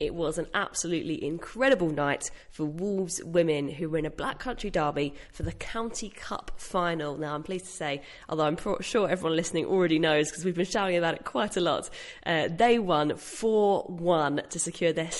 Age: 20-39